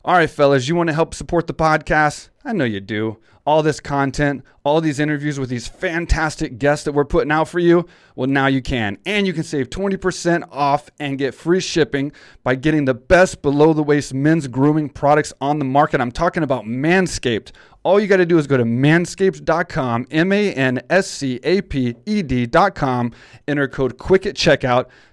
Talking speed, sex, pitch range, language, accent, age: 170 wpm, male, 135-170 Hz, English, American, 30-49